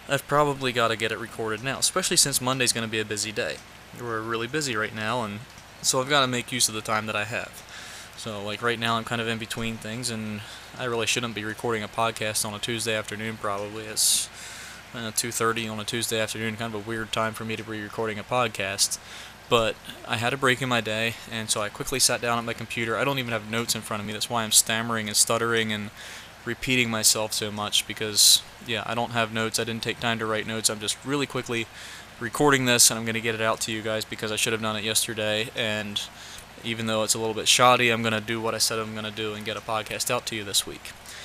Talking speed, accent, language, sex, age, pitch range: 255 wpm, American, English, male, 20-39, 110-120 Hz